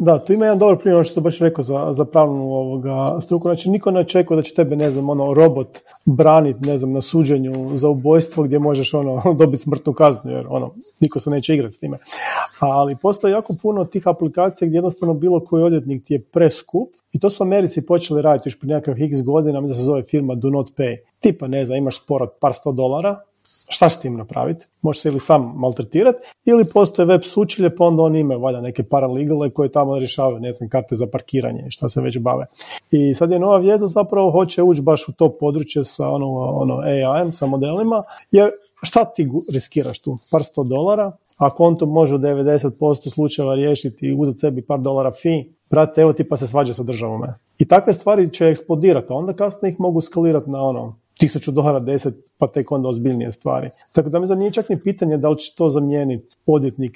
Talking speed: 215 wpm